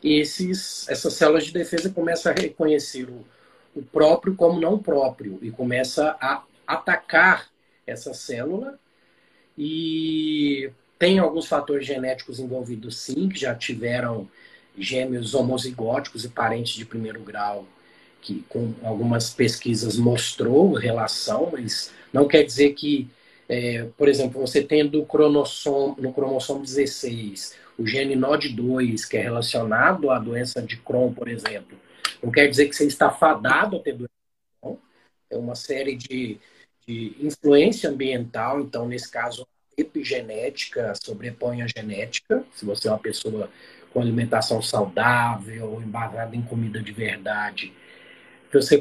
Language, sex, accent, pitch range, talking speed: Portuguese, male, Brazilian, 120-150 Hz, 130 wpm